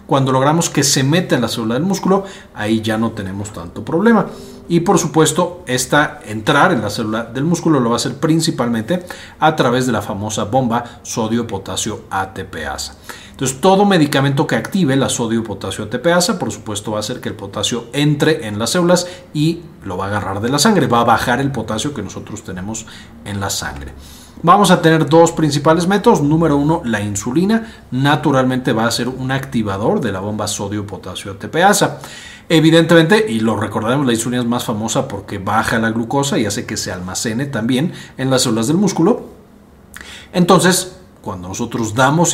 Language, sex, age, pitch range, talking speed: Spanish, male, 40-59, 110-160 Hz, 180 wpm